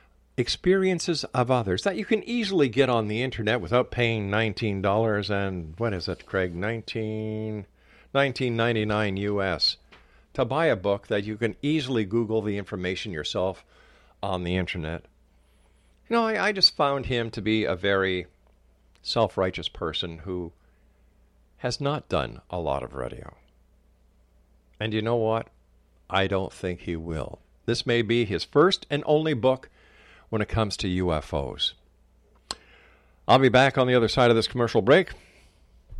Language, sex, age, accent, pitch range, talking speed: English, male, 50-69, American, 85-130 Hz, 150 wpm